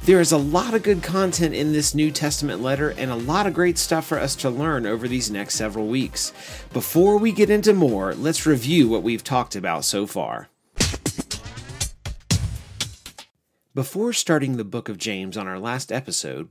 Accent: American